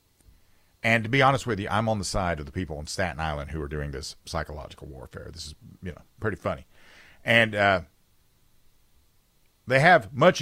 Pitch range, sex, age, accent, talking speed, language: 90-135 Hz, male, 50-69, American, 190 wpm, English